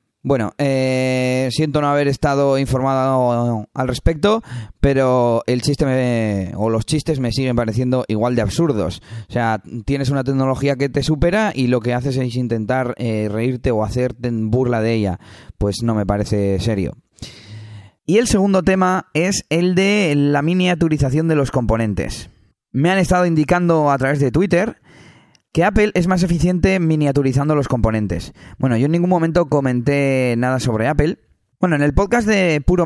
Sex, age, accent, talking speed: male, 20-39, Spanish, 165 wpm